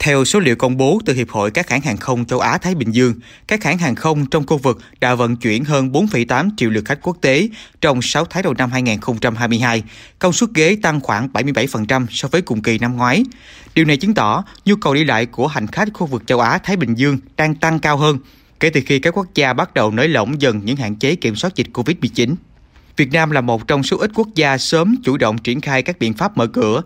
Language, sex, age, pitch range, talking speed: Vietnamese, male, 20-39, 120-160 Hz, 245 wpm